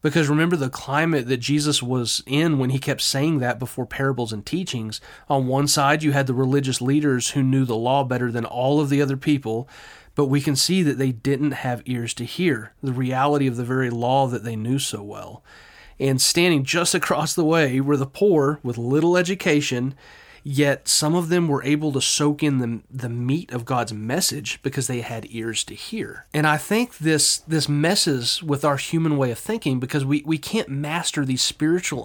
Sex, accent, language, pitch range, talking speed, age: male, American, English, 125-155 Hz, 205 wpm, 30-49